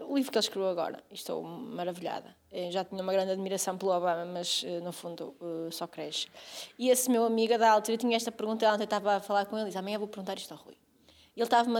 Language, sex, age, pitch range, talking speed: Portuguese, female, 20-39, 200-255 Hz, 240 wpm